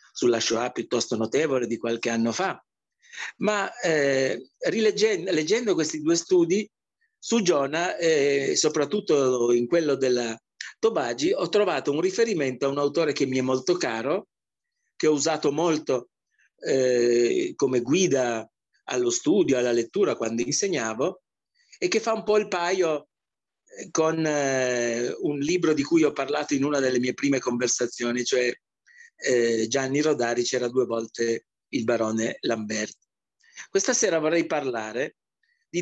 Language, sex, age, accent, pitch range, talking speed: Italian, male, 50-69, native, 125-195 Hz, 135 wpm